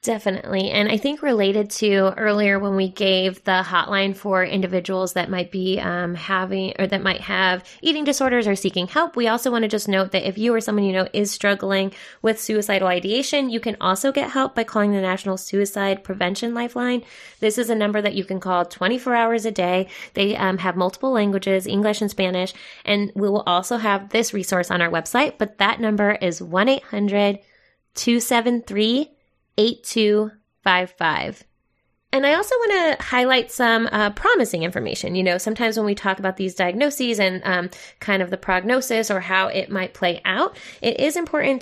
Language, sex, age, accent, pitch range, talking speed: English, female, 20-39, American, 190-230 Hz, 185 wpm